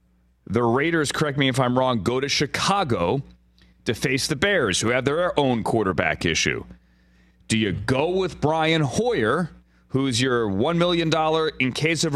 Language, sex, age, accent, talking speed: English, male, 30-49, American, 165 wpm